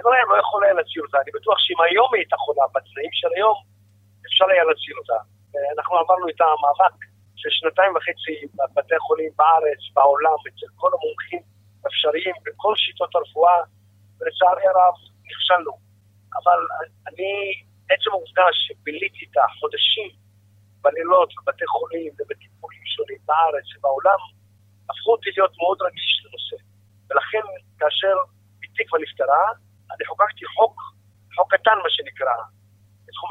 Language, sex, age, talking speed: Hebrew, male, 50-69, 130 wpm